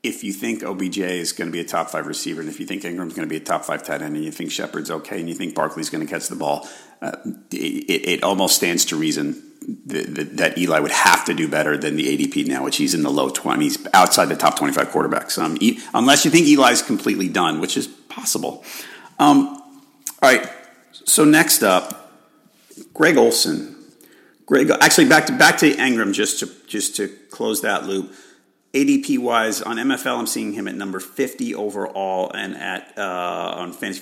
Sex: male